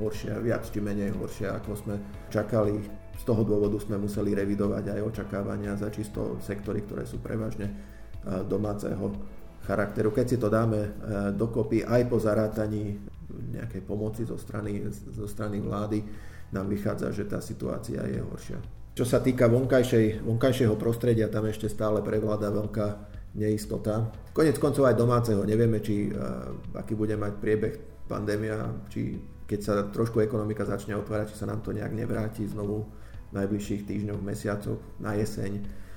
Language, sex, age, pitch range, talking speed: Slovak, male, 40-59, 100-110 Hz, 145 wpm